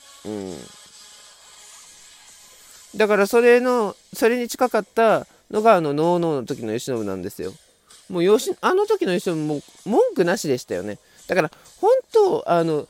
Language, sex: Japanese, male